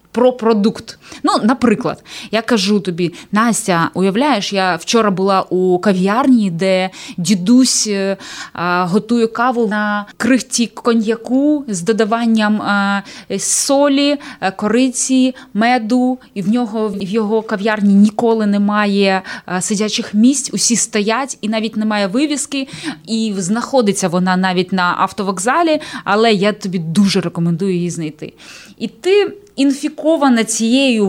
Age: 20-39